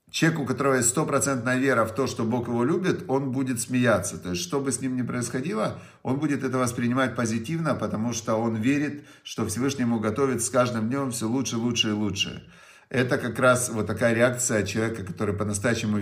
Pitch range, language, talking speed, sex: 105-135 Hz, Russian, 200 wpm, male